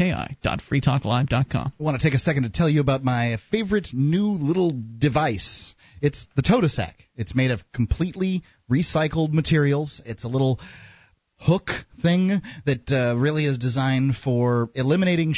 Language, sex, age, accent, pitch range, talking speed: English, male, 30-49, American, 115-145 Hz, 150 wpm